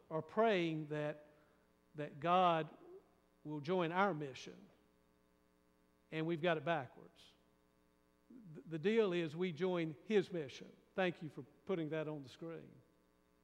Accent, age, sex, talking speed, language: American, 50-69, male, 135 wpm, English